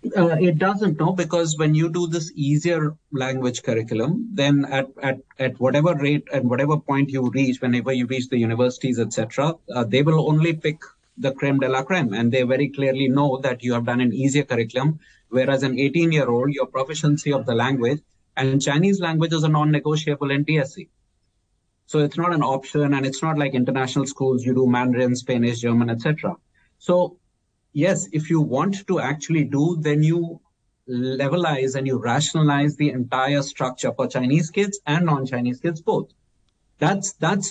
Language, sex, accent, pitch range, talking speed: English, male, Indian, 130-155 Hz, 180 wpm